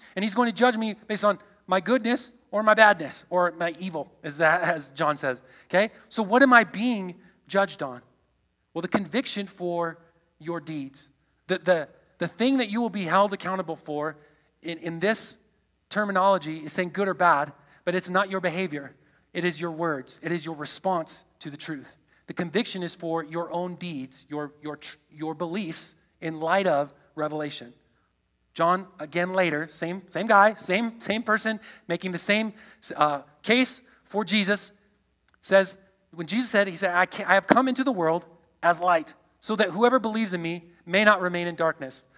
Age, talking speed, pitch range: 30-49, 185 wpm, 165-210 Hz